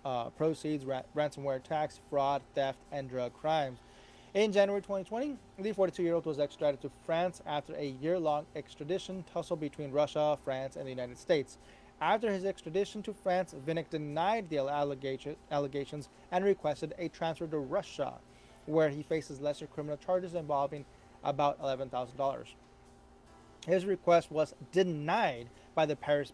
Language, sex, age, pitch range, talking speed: English, male, 30-49, 145-185 Hz, 150 wpm